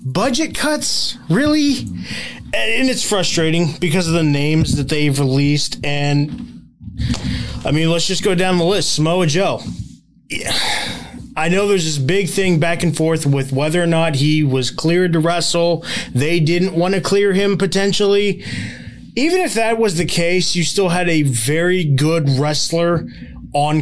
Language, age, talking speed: English, 20-39, 160 wpm